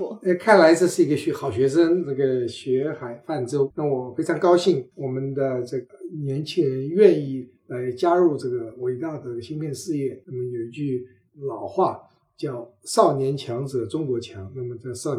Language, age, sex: Chinese, 50-69, male